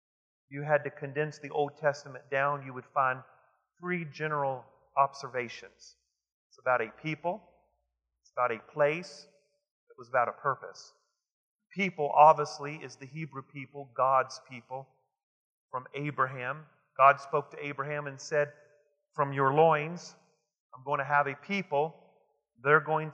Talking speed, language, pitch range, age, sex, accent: 140 wpm, English, 140-160 Hz, 40-59, male, American